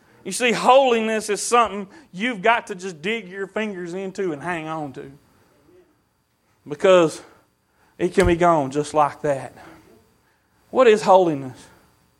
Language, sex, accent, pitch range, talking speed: English, male, American, 175-245 Hz, 140 wpm